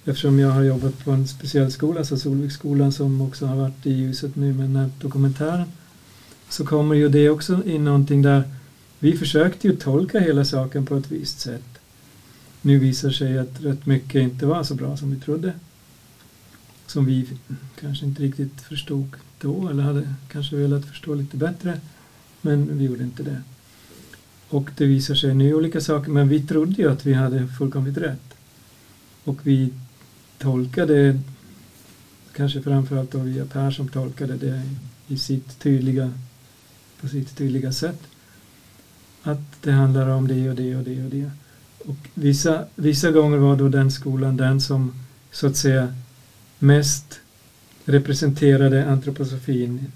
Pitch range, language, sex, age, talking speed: 130-145 Hz, Swedish, male, 50-69, 160 wpm